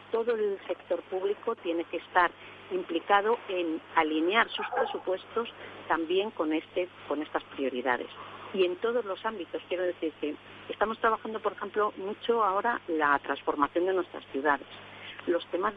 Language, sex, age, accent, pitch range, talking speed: Spanish, female, 40-59, Spanish, 145-190 Hz, 150 wpm